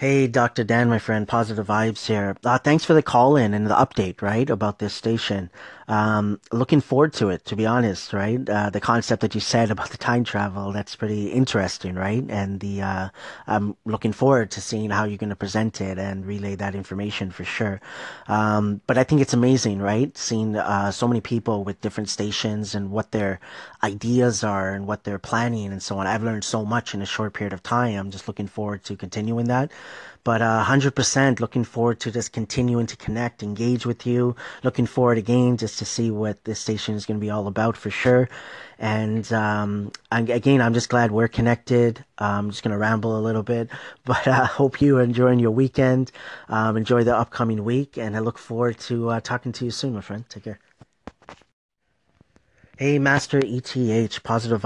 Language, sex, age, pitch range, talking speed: English, male, 30-49, 105-120 Hz, 200 wpm